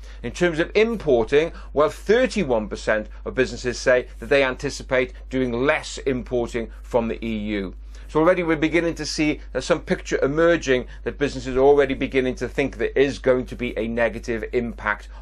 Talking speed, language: 165 wpm, English